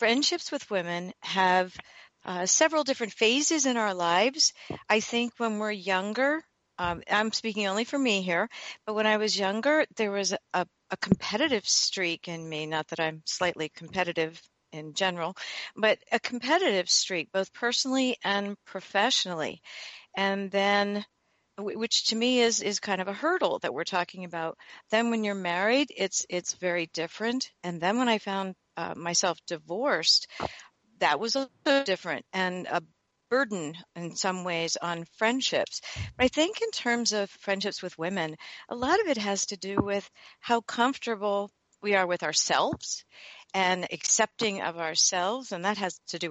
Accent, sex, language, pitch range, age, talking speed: American, female, English, 180-235 Hz, 50-69, 165 wpm